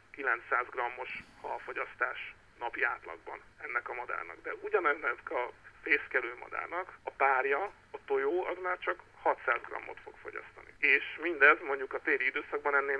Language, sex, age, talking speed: Hungarian, male, 50-69, 145 wpm